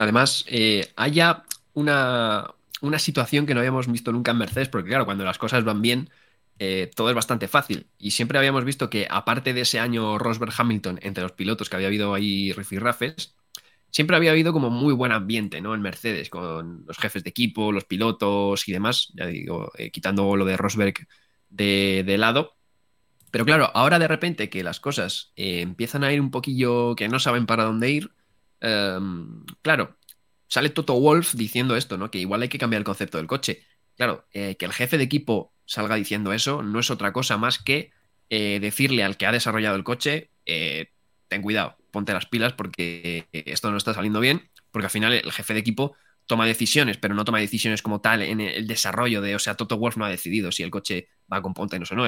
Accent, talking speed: Spanish, 205 wpm